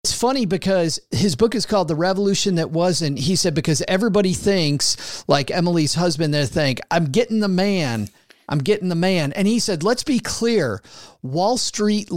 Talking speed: 180 wpm